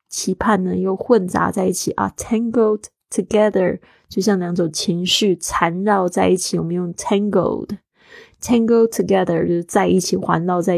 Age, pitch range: 20-39, 175-200 Hz